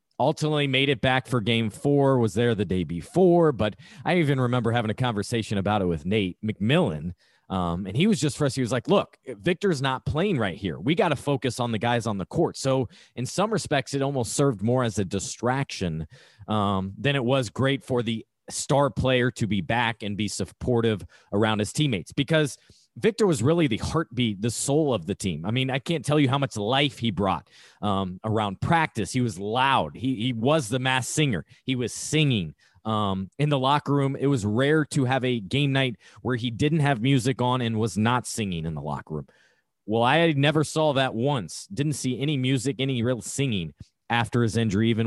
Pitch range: 110-140 Hz